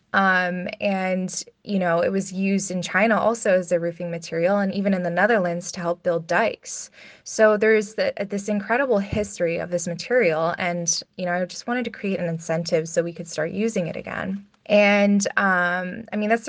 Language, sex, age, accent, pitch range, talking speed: English, female, 20-39, American, 175-205 Hz, 195 wpm